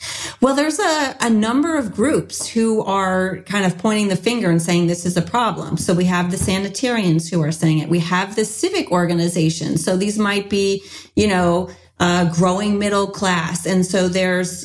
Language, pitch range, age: English, 180-225 Hz, 30-49